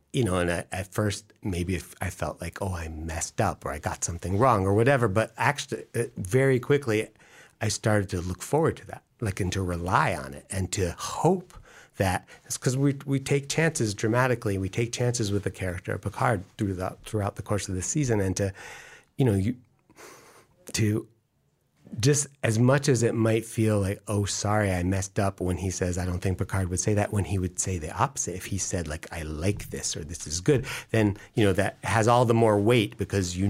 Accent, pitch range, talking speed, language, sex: American, 95-120 Hz, 220 wpm, English, male